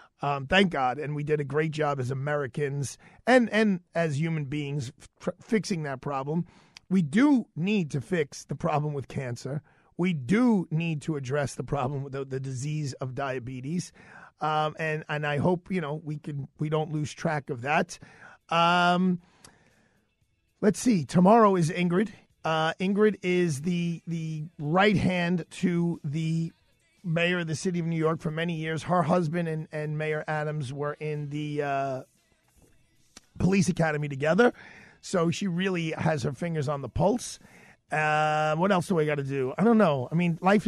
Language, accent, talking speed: English, American, 170 wpm